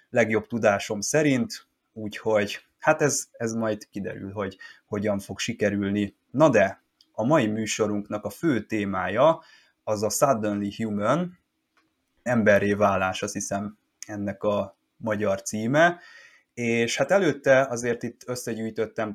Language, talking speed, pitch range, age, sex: Hungarian, 120 wpm, 105-115 Hz, 20-39, male